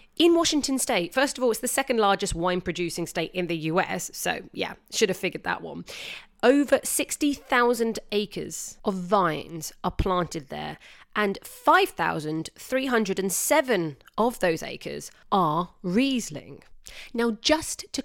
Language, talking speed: English, 135 wpm